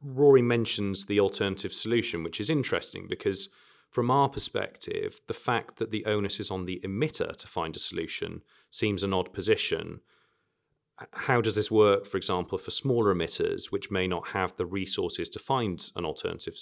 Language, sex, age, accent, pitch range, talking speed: English, male, 30-49, British, 100-150 Hz, 175 wpm